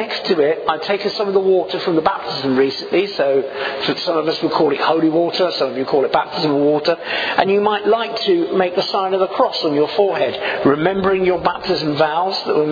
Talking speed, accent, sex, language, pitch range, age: 225 wpm, British, male, English, 150-200 Hz, 50-69